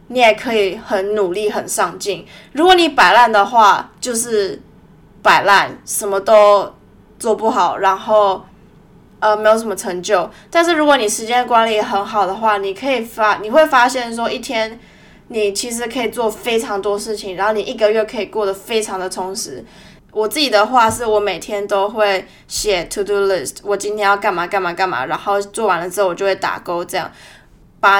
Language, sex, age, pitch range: Chinese, female, 20-39, 195-225 Hz